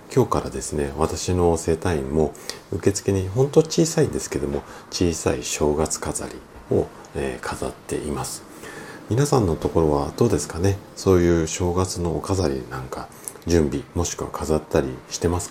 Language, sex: Japanese, male